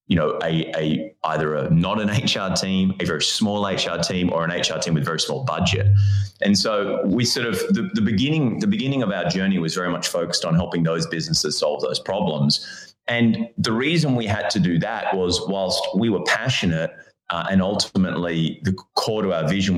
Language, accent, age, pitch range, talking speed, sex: English, Australian, 30-49, 80-95 Hz, 210 wpm, male